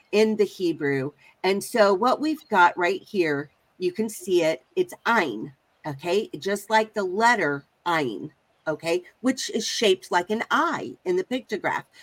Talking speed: 160 wpm